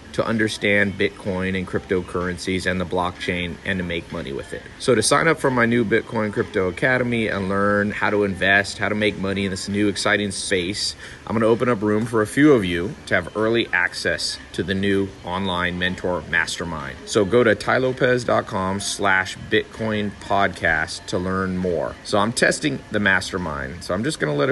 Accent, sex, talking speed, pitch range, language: American, male, 190 wpm, 95-115 Hz, English